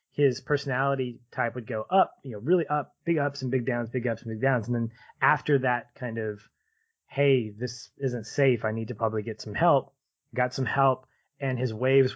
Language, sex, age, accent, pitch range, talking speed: English, male, 20-39, American, 120-145 Hz, 210 wpm